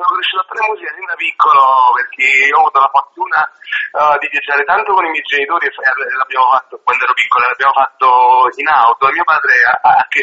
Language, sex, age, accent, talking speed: Italian, male, 40-59, native, 210 wpm